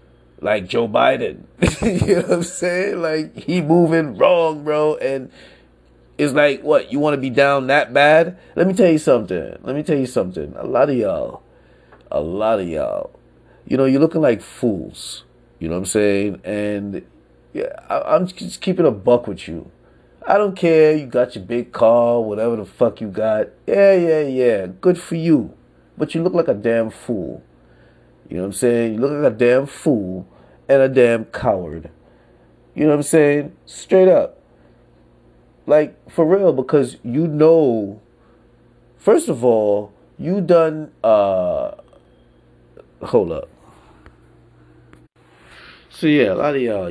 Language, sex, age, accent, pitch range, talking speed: English, male, 30-49, American, 95-150 Hz, 170 wpm